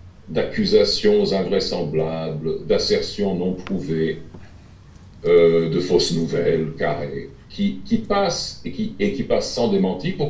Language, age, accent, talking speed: French, 50-69, French, 120 wpm